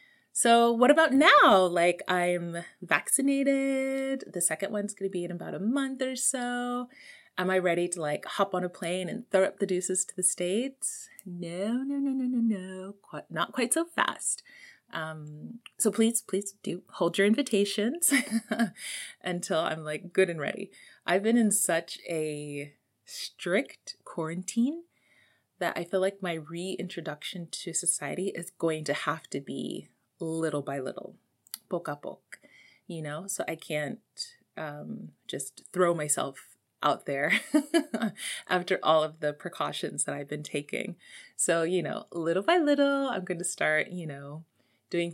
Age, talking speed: 30-49, 160 wpm